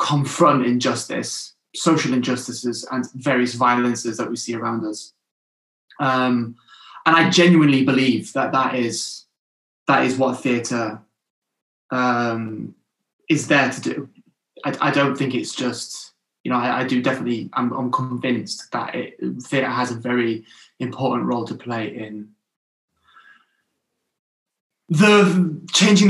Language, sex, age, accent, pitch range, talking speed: English, male, 20-39, British, 115-135 Hz, 130 wpm